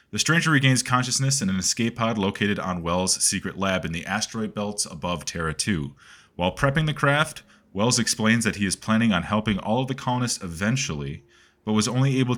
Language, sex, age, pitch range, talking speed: English, male, 30-49, 95-125 Hz, 195 wpm